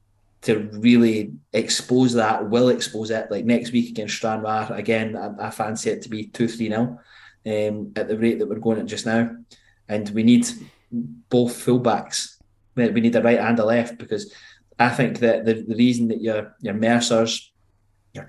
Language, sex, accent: English, male, British